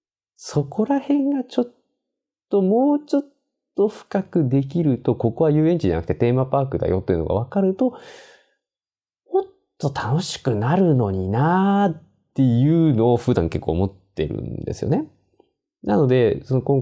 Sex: male